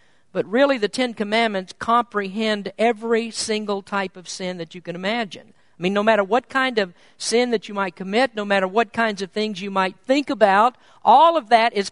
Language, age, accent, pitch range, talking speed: English, 50-69, American, 190-250 Hz, 205 wpm